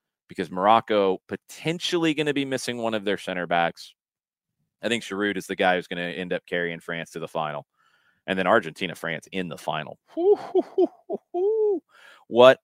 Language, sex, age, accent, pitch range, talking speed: English, male, 30-49, American, 90-120 Hz, 170 wpm